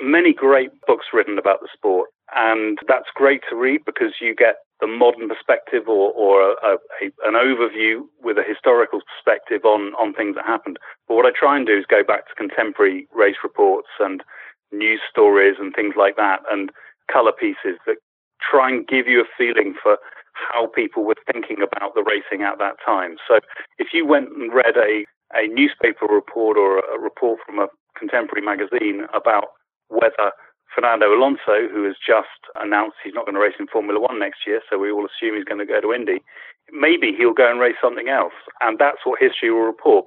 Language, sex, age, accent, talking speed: English, male, 40-59, British, 195 wpm